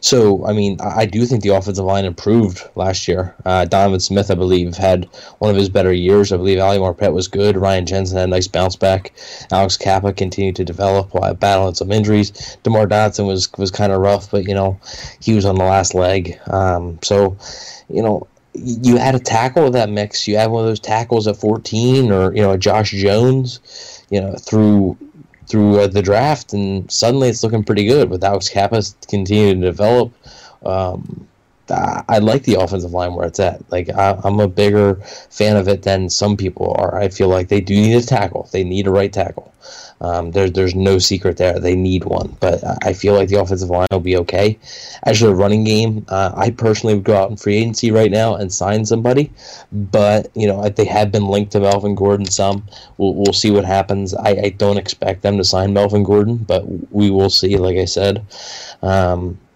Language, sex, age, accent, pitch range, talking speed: English, male, 20-39, American, 95-105 Hz, 210 wpm